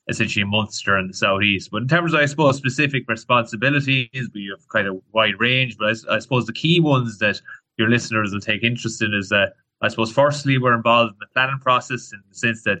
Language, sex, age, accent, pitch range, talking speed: English, male, 20-39, Irish, 105-120 Hz, 230 wpm